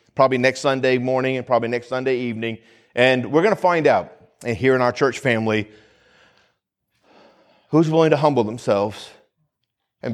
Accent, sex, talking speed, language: American, male, 160 wpm, English